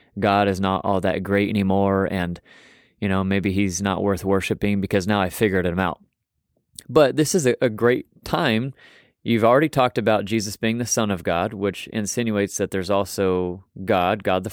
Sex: male